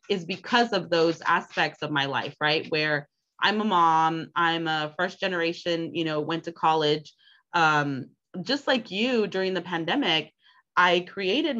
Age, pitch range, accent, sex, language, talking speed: 20-39, 160-195 Hz, American, female, English, 160 wpm